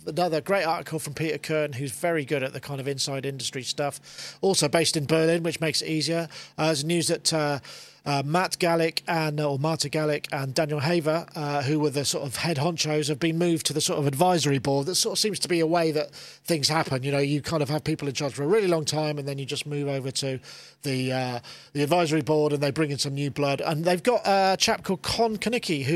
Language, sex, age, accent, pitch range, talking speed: English, male, 40-59, British, 140-170 Hz, 250 wpm